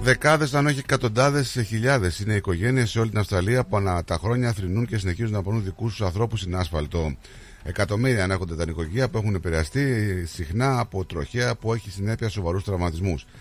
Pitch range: 95-120 Hz